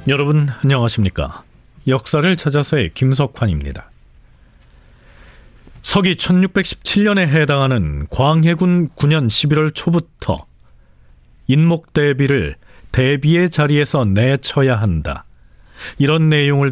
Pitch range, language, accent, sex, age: 95-155 Hz, Korean, native, male, 40-59